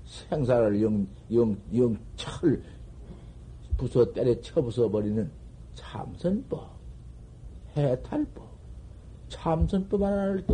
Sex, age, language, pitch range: male, 60-79, Korean, 110-180 Hz